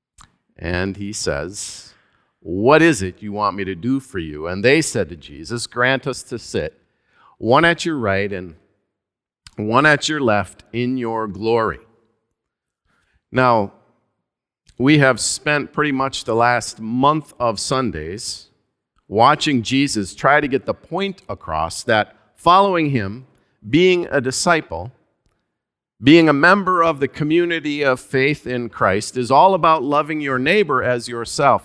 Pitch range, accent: 115-165 Hz, American